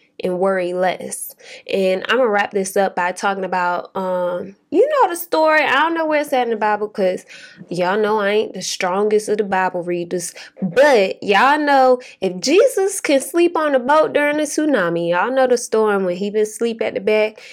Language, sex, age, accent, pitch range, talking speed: English, female, 20-39, American, 195-295 Hz, 210 wpm